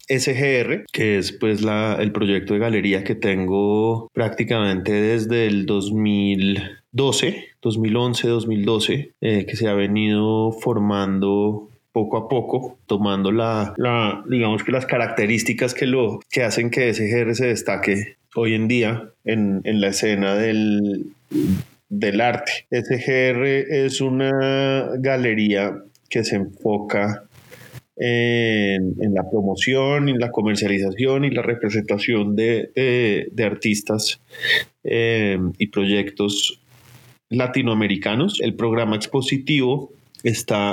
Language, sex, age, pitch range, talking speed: Spanish, male, 20-39, 105-120 Hz, 115 wpm